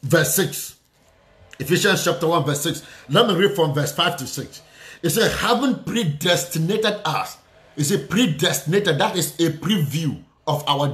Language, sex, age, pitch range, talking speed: English, male, 50-69, 150-210 Hz, 165 wpm